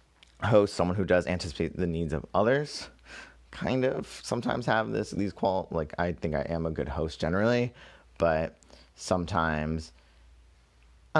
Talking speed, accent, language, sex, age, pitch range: 150 wpm, American, English, male, 30-49, 75-95 Hz